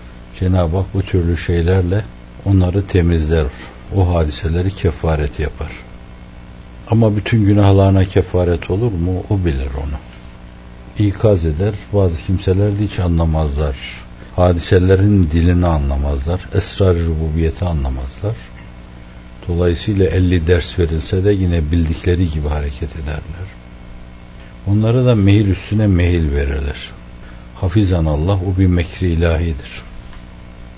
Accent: native